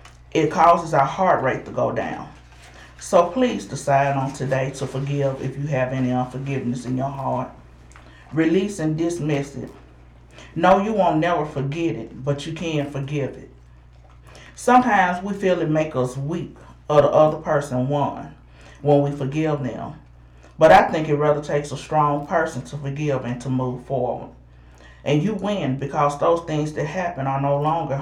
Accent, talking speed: American, 170 wpm